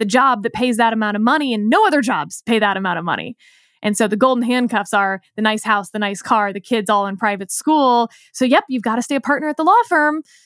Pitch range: 210-260 Hz